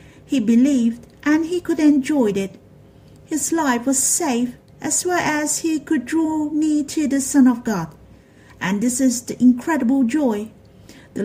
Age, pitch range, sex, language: 50-69, 230-280 Hz, female, Chinese